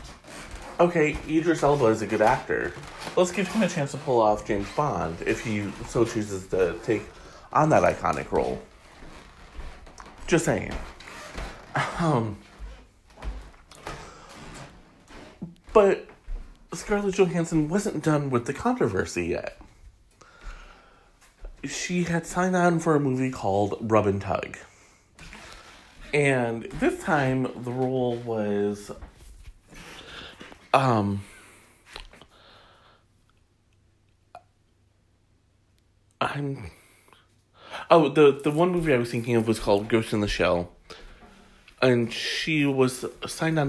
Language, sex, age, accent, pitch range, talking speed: English, male, 30-49, American, 100-145 Hz, 105 wpm